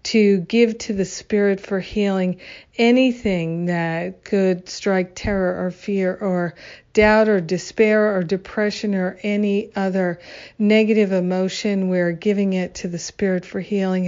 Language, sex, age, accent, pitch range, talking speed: English, female, 50-69, American, 180-210 Hz, 140 wpm